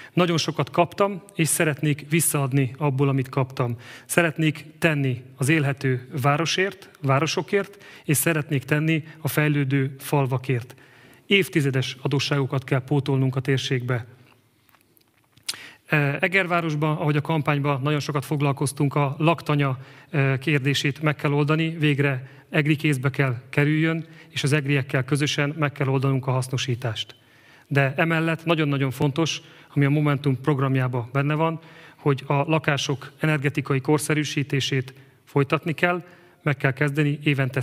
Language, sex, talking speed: Hungarian, male, 120 wpm